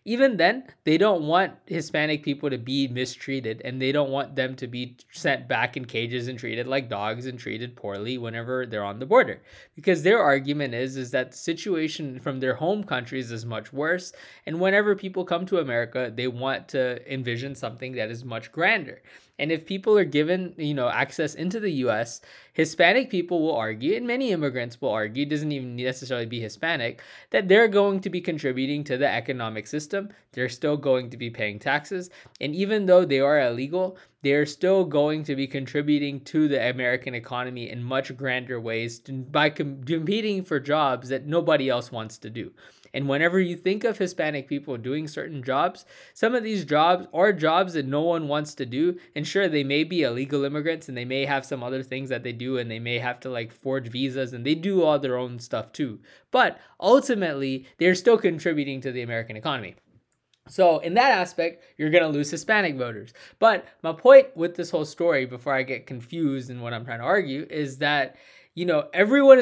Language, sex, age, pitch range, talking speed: English, male, 20-39, 125-170 Hz, 200 wpm